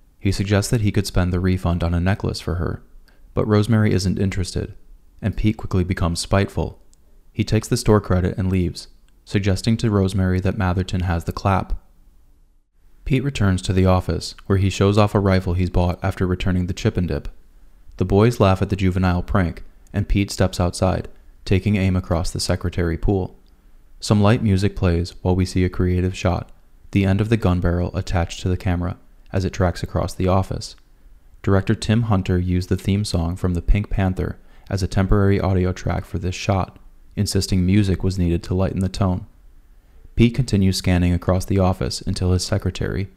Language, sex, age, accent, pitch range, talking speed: English, male, 20-39, American, 85-100 Hz, 190 wpm